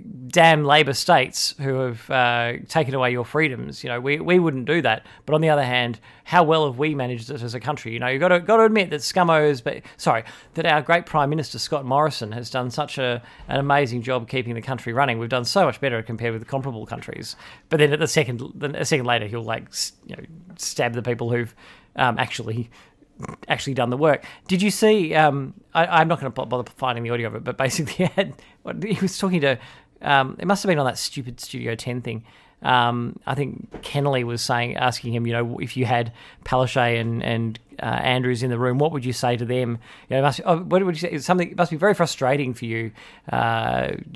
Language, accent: English, Australian